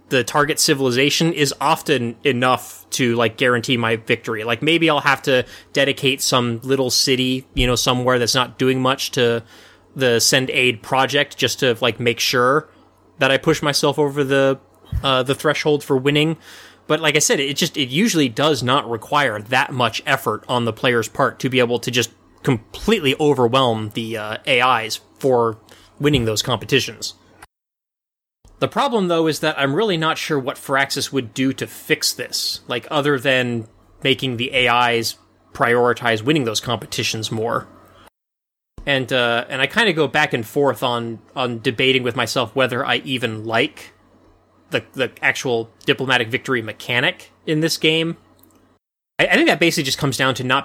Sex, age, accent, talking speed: male, 20-39, American, 170 wpm